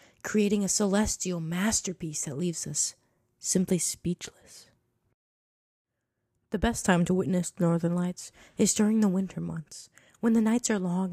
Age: 20-39